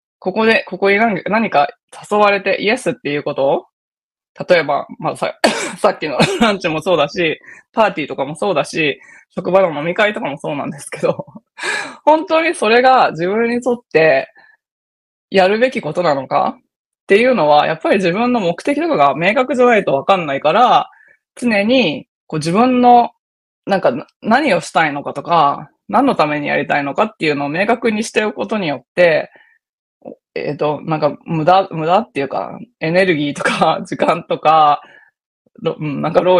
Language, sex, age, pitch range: Japanese, female, 20-39, 165-235 Hz